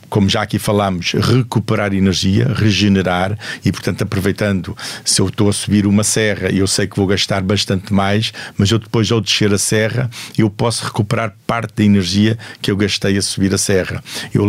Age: 50-69